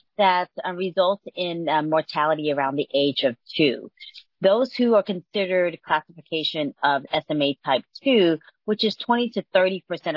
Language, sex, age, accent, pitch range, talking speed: English, female, 40-59, American, 150-195 Hz, 150 wpm